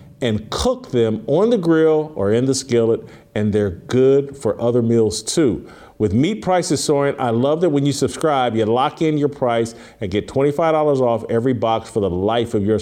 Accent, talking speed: American, 200 wpm